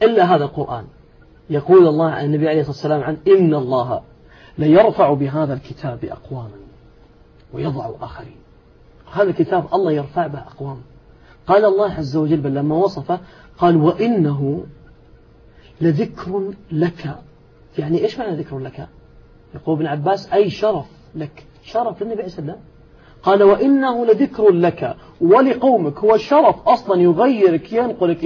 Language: Arabic